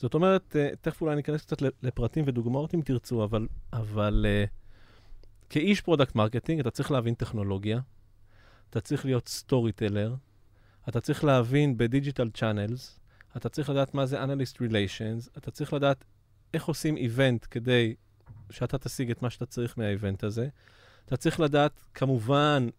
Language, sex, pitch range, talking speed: Hebrew, male, 105-140 Hz, 145 wpm